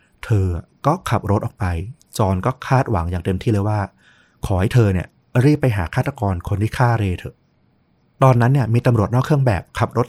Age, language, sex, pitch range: 30-49, Thai, male, 95-125 Hz